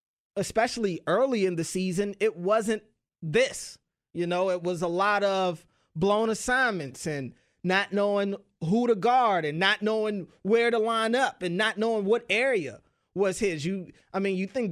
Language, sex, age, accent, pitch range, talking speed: English, male, 30-49, American, 165-205 Hz, 170 wpm